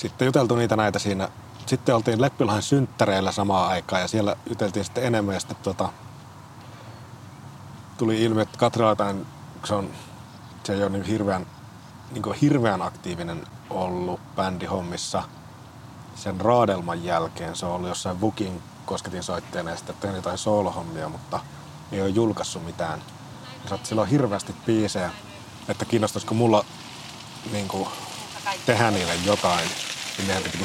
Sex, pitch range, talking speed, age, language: male, 95-120 Hz, 135 wpm, 30-49, Finnish